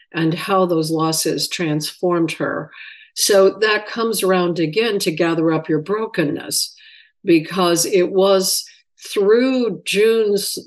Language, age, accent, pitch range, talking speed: English, 50-69, American, 160-195 Hz, 120 wpm